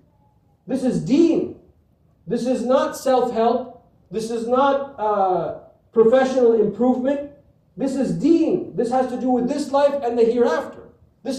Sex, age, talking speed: male, 50-69, 140 wpm